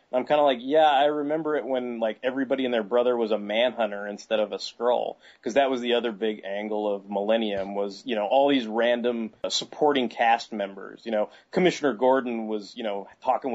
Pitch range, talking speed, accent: 110-130 Hz, 210 wpm, American